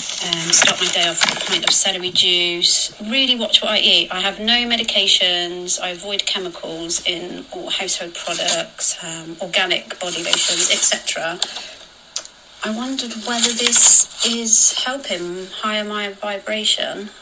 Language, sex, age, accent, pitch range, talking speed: English, female, 30-49, British, 180-220 Hz, 145 wpm